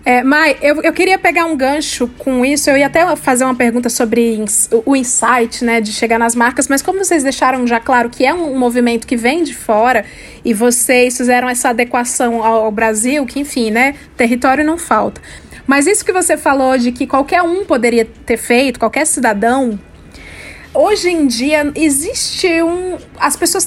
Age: 20-39